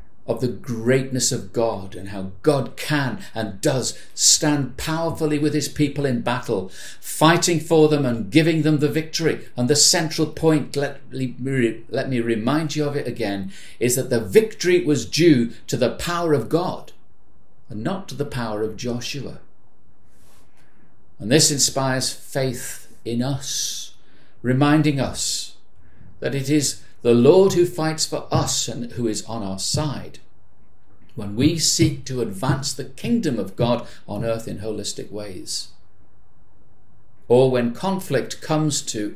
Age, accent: 60-79, British